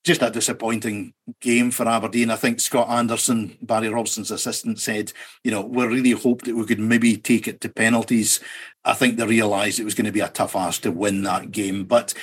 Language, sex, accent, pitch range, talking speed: English, male, British, 115-130 Hz, 215 wpm